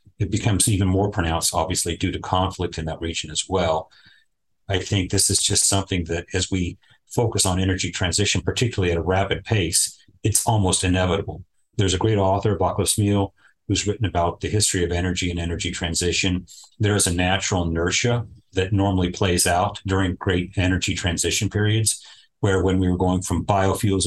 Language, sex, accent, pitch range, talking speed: English, male, American, 90-105 Hz, 175 wpm